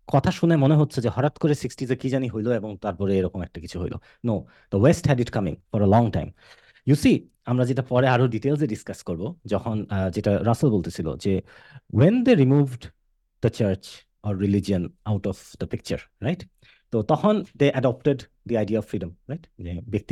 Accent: Indian